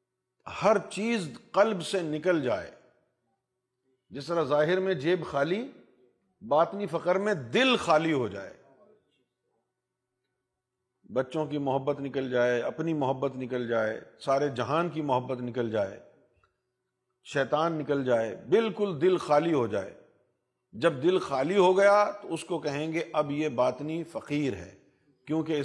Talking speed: 135 wpm